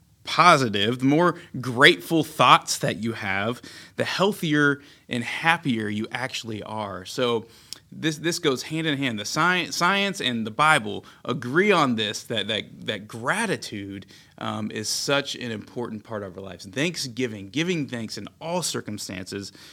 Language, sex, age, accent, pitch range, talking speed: English, male, 30-49, American, 105-140 Hz, 150 wpm